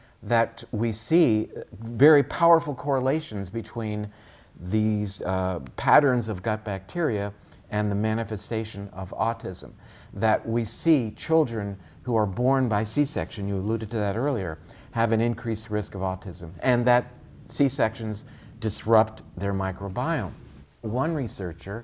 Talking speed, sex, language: 125 wpm, male, English